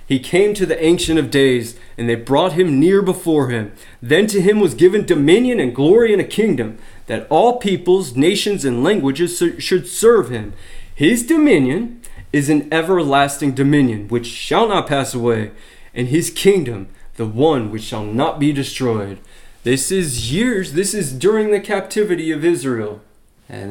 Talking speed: 165 wpm